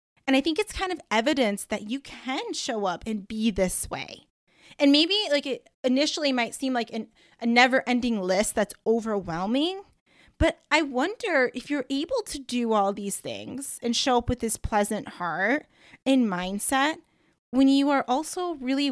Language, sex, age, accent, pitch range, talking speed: English, female, 20-39, American, 215-275 Hz, 170 wpm